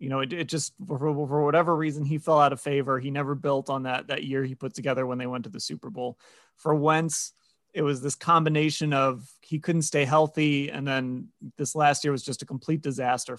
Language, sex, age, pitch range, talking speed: English, male, 30-49, 135-170 Hz, 235 wpm